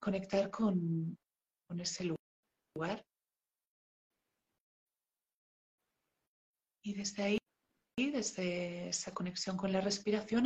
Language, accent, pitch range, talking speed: Spanish, Spanish, 175-205 Hz, 85 wpm